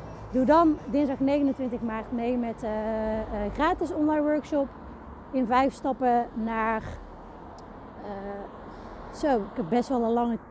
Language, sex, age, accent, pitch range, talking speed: Dutch, female, 30-49, Dutch, 215-275 Hz, 135 wpm